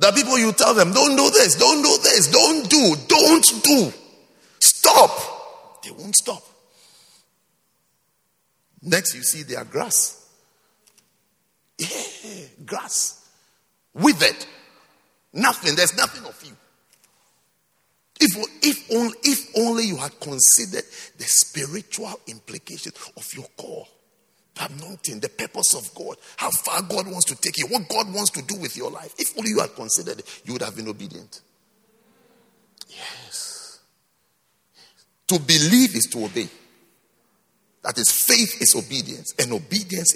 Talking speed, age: 135 wpm, 50-69